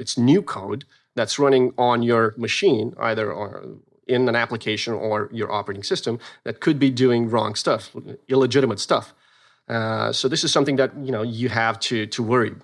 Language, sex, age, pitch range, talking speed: English, male, 30-49, 110-135 Hz, 175 wpm